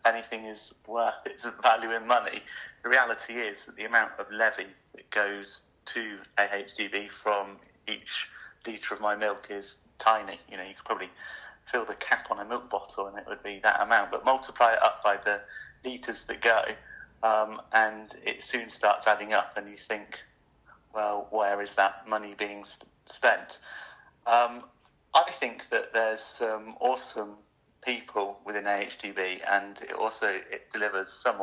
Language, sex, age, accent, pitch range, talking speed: English, male, 40-59, British, 100-110 Hz, 170 wpm